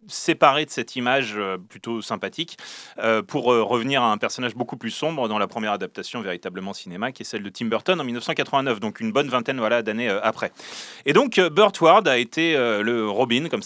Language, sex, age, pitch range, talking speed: French, male, 30-49, 115-165 Hz, 215 wpm